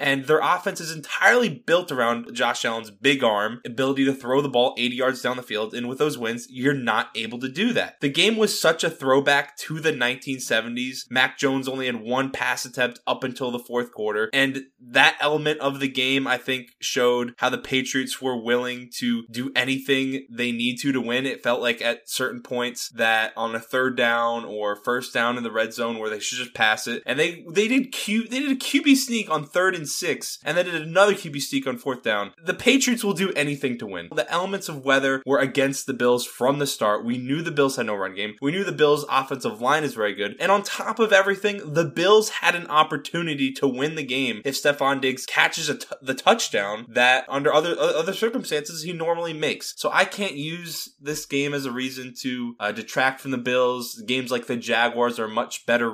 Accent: American